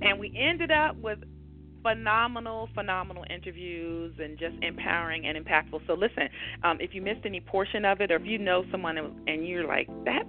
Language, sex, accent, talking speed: English, female, American, 185 wpm